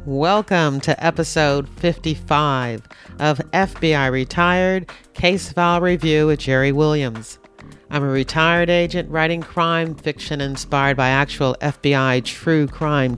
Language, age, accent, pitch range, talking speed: English, 50-69, American, 135-170 Hz, 120 wpm